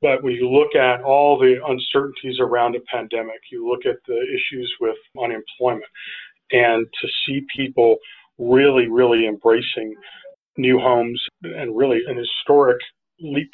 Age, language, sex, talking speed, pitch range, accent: 40-59, English, male, 140 wpm, 120-185 Hz, American